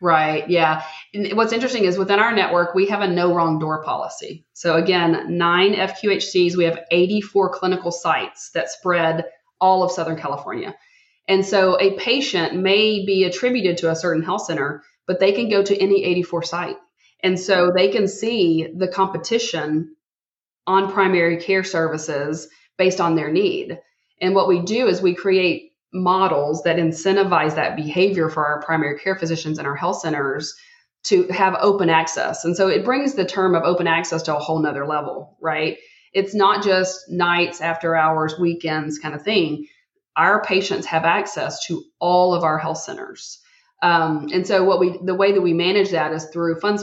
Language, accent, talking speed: English, American, 180 wpm